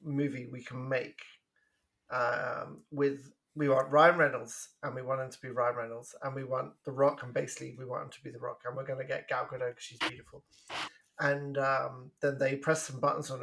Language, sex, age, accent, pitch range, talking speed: English, male, 30-49, British, 130-160 Hz, 220 wpm